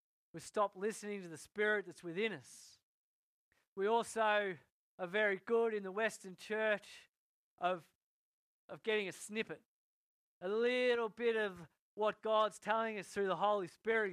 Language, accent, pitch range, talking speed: English, Australian, 180-220 Hz, 150 wpm